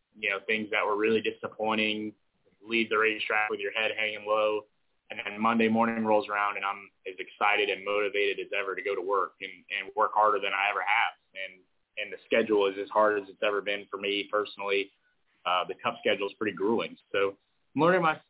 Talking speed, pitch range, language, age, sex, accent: 220 wpm, 100-115 Hz, English, 20-39, male, American